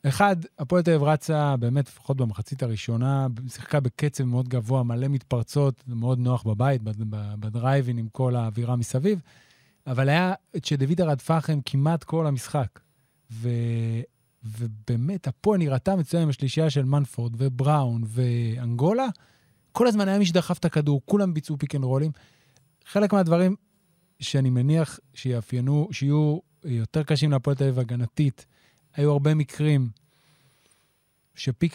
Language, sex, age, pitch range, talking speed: Hebrew, male, 30-49, 125-160 Hz, 125 wpm